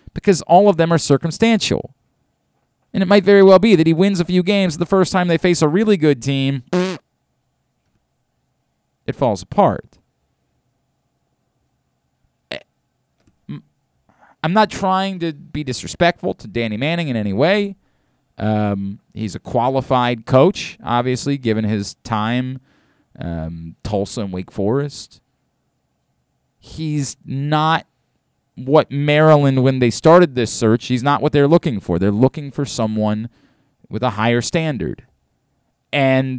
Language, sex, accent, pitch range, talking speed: English, male, American, 115-160 Hz, 130 wpm